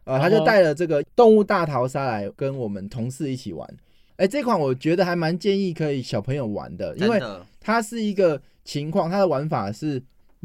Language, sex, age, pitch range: Chinese, male, 20-39, 120-185 Hz